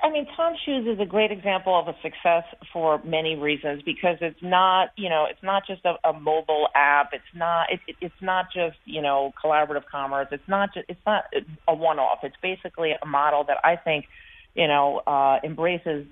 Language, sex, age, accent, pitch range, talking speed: English, female, 40-59, American, 140-175 Hz, 210 wpm